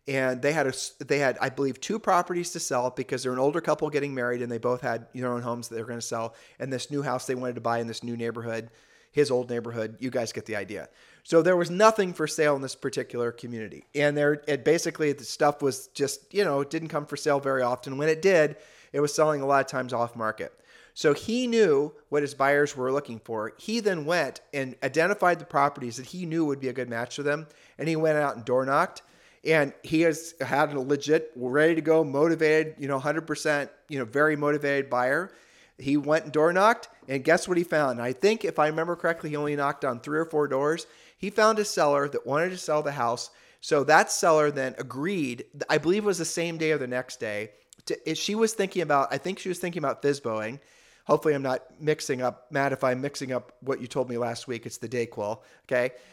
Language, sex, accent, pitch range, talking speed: English, male, American, 125-160 Hz, 240 wpm